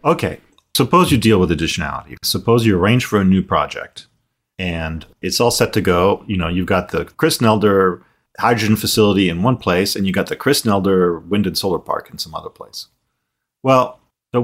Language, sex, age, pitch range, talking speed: English, male, 40-59, 90-120 Hz, 195 wpm